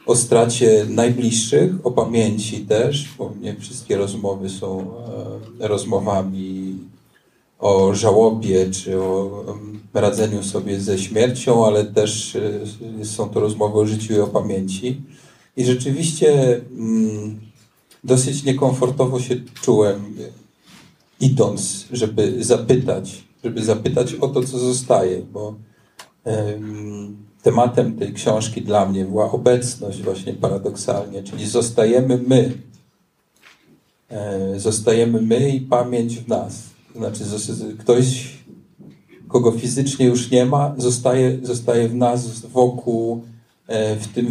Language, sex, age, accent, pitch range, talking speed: Polish, male, 40-59, native, 105-125 Hz, 105 wpm